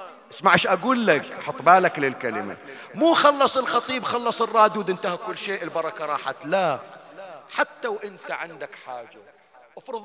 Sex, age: male, 40-59